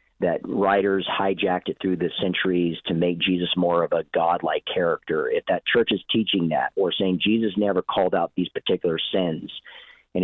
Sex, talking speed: male, 180 wpm